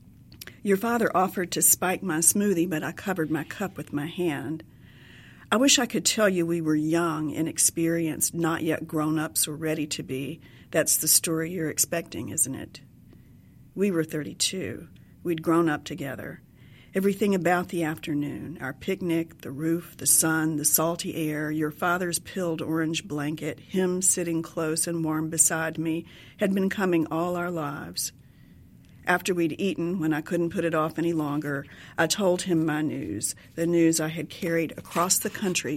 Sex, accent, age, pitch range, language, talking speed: female, American, 50-69, 155-175 Hz, English, 170 wpm